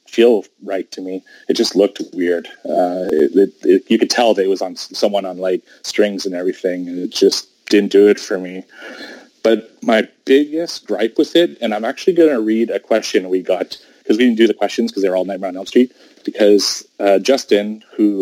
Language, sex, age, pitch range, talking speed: English, male, 30-49, 95-110 Hz, 210 wpm